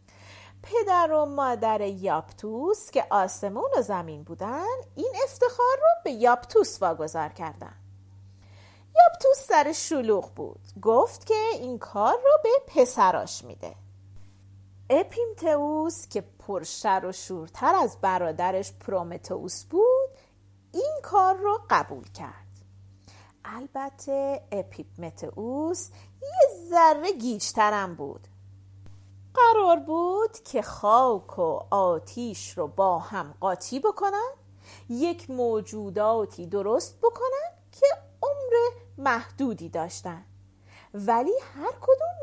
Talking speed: 100 wpm